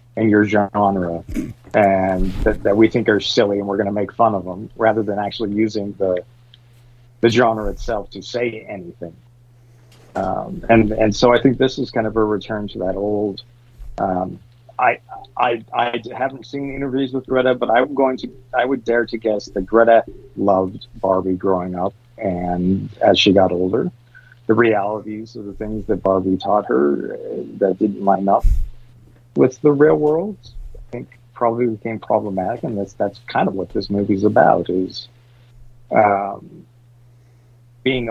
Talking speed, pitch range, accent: 170 wpm, 100-120 Hz, American